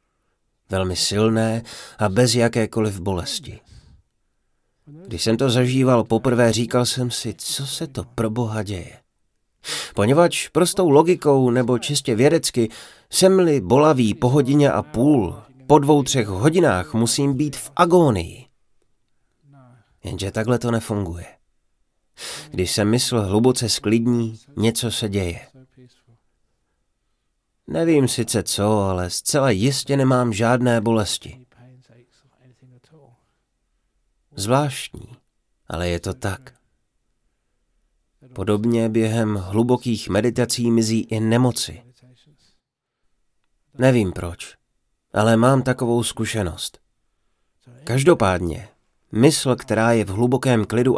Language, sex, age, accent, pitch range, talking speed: Czech, male, 30-49, native, 105-130 Hz, 100 wpm